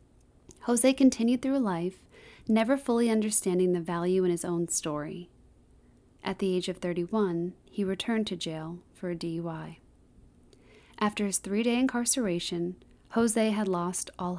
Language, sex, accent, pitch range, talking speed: English, female, American, 175-215 Hz, 140 wpm